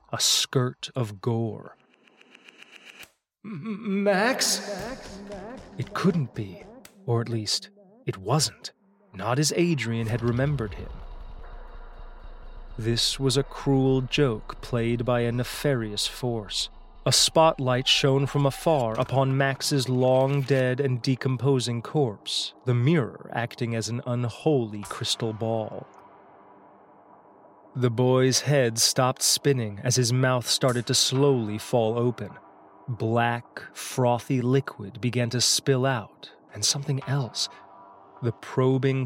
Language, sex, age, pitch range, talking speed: English, male, 30-49, 115-140 Hz, 110 wpm